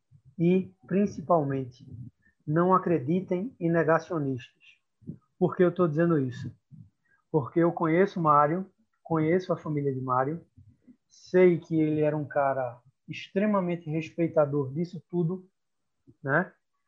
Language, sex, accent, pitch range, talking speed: Portuguese, male, Brazilian, 145-175 Hz, 115 wpm